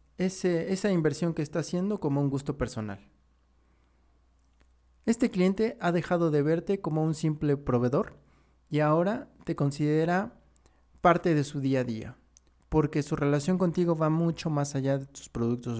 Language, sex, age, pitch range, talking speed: Spanish, male, 30-49, 110-165 Hz, 150 wpm